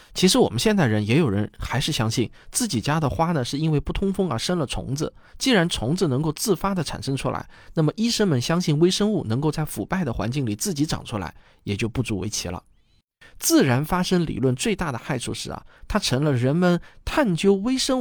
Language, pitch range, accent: Chinese, 115-180 Hz, native